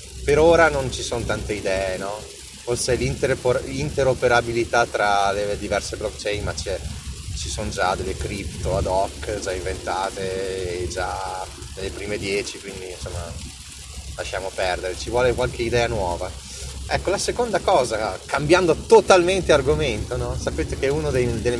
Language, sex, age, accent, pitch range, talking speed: Italian, male, 30-49, native, 95-125 Hz, 140 wpm